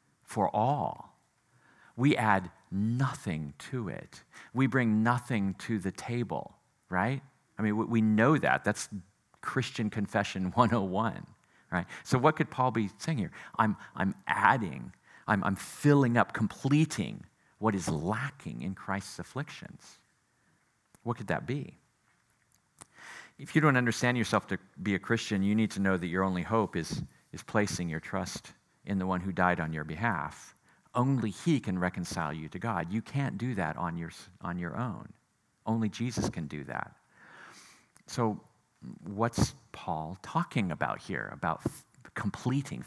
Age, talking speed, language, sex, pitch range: 50-69, 150 wpm, English, male, 90-120 Hz